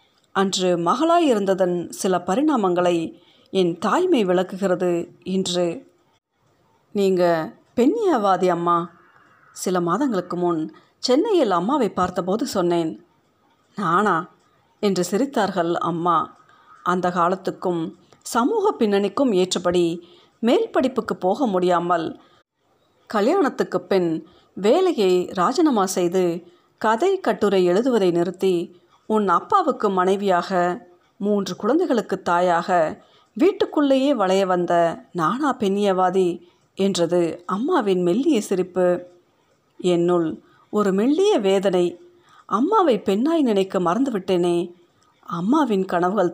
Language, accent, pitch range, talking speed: Tamil, native, 175-220 Hz, 85 wpm